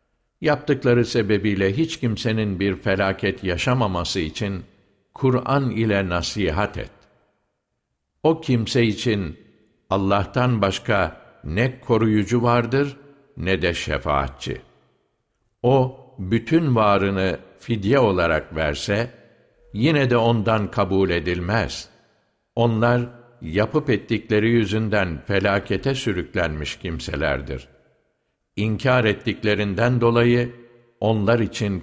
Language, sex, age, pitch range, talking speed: Turkish, male, 60-79, 95-120 Hz, 85 wpm